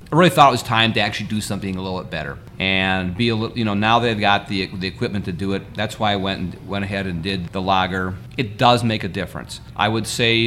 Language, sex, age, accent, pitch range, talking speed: English, male, 40-59, American, 95-120 Hz, 275 wpm